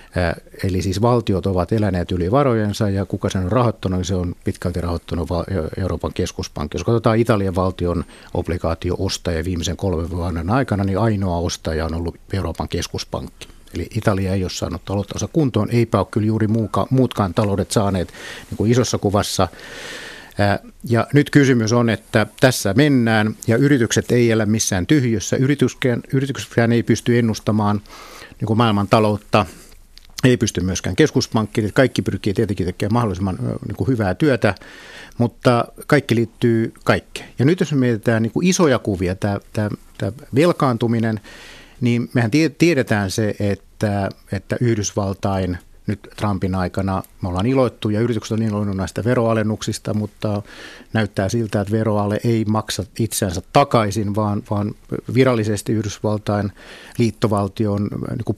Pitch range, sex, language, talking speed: 95-115 Hz, male, Finnish, 135 wpm